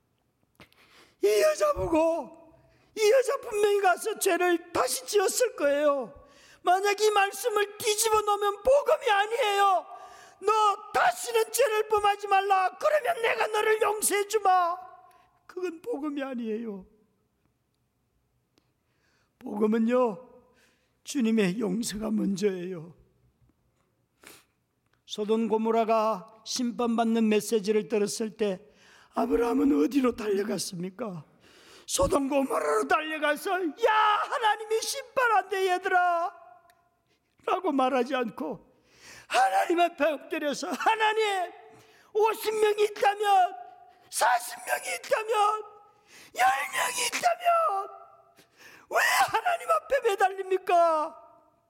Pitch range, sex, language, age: 250-415 Hz, male, Korean, 40-59